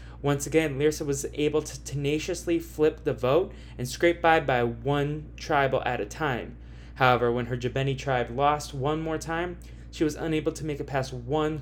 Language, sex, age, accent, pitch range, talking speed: English, male, 20-39, American, 130-160 Hz, 185 wpm